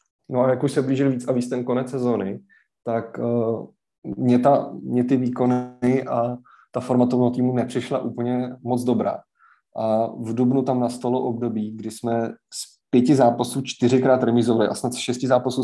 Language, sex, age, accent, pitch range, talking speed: Czech, male, 20-39, native, 110-125 Hz, 175 wpm